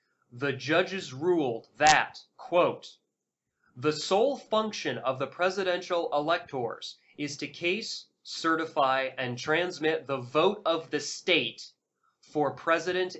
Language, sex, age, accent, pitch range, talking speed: English, male, 30-49, American, 135-180 Hz, 115 wpm